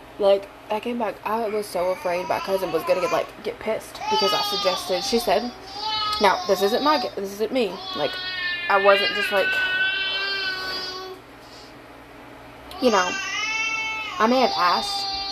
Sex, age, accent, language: female, 20-39, American, English